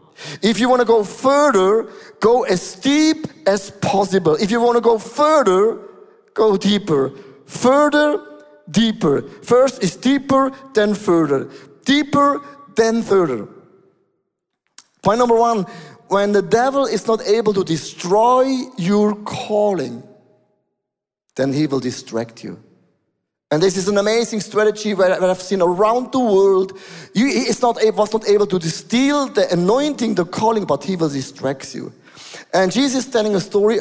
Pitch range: 165-220 Hz